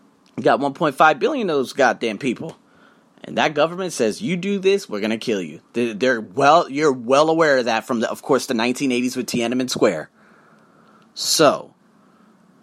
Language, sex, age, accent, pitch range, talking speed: English, male, 30-49, American, 135-205 Hz, 170 wpm